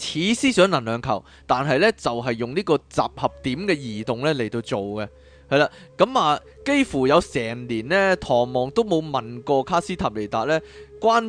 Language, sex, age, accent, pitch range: Chinese, male, 20-39, native, 115-165 Hz